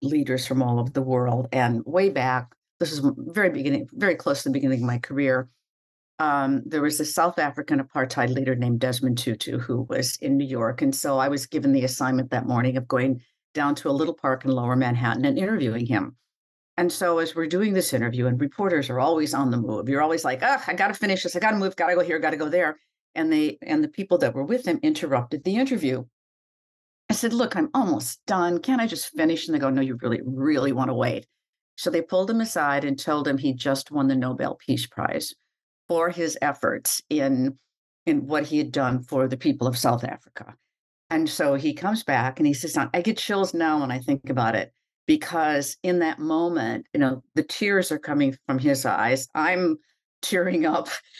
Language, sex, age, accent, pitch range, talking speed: English, female, 60-79, American, 130-170 Hz, 215 wpm